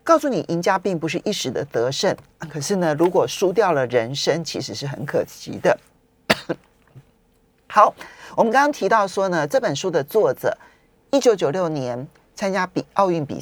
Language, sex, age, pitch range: Chinese, male, 40-59, 155-240 Hz